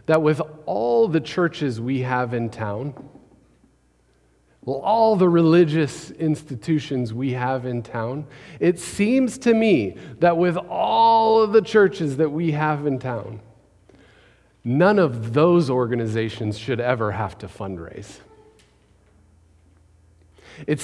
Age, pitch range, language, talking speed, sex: 40-59, 115-165 Hz, English, 125 wpm, male